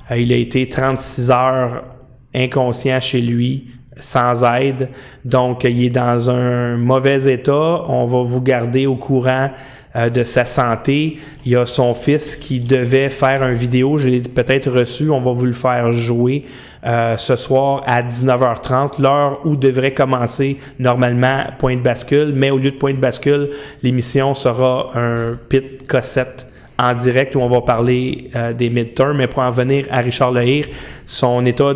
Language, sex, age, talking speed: French, male, 30-49, 170 wpm